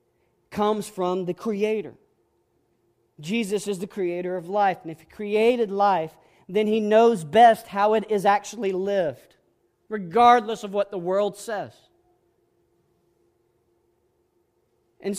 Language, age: English, 40-59